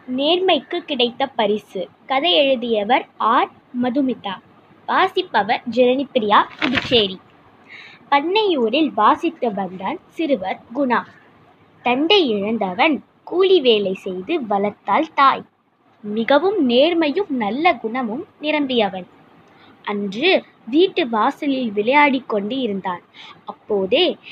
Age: 20-39